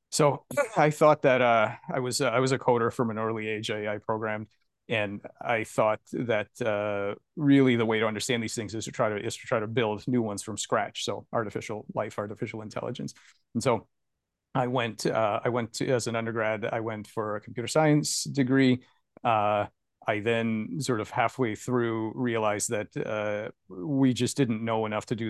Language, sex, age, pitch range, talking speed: English, male, 30-49, 110-125 Hz, 195 wpm